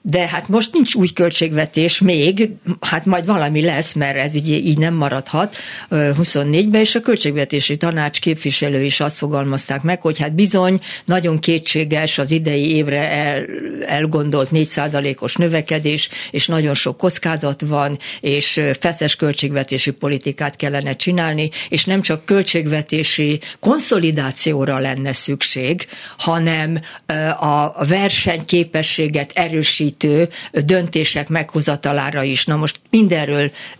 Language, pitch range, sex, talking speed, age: Hungarian, 145-180 Hz, female, 120 wpm, 60-79